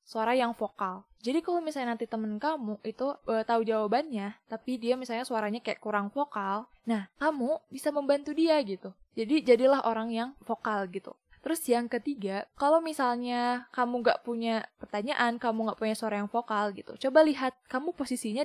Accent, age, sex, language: native, 10-29, female, Indonesian